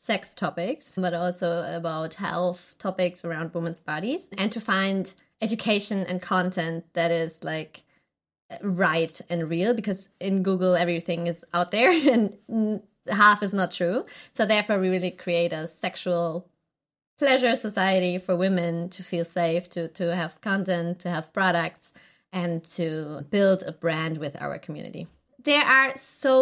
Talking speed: 150 wpm